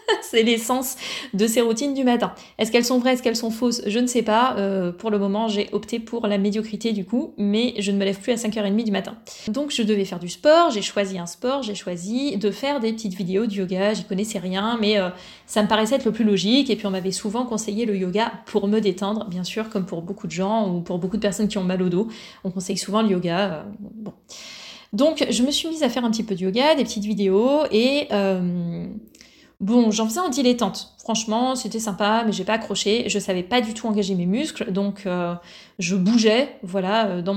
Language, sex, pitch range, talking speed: French, female, 195-230 Hz, 240 wpm